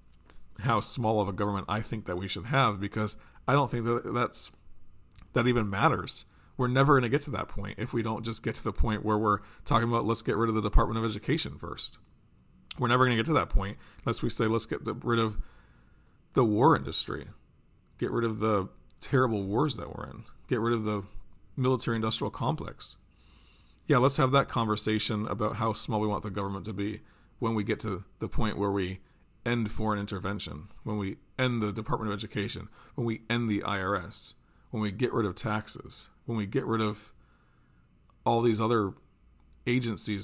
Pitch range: 100-120 Hz